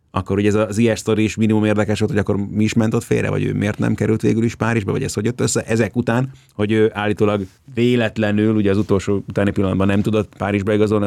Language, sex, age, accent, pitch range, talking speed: English, male, 30-49, Finnish, 95-115 Hz, 220 wpm